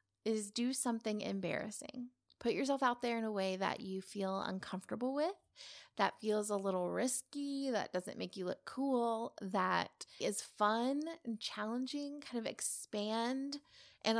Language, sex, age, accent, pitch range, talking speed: English, female, 20-39, American, 200-245 Hz, 150 wpm